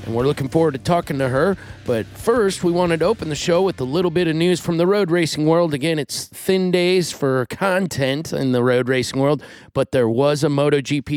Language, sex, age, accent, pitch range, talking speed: English, male, 30-49, American, 125-155 Hz, 230 wpm